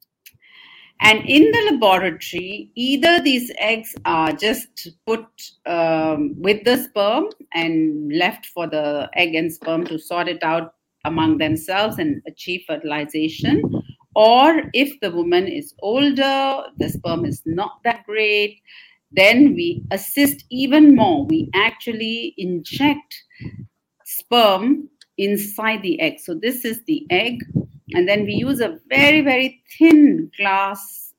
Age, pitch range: 50-69, 165-275 Hz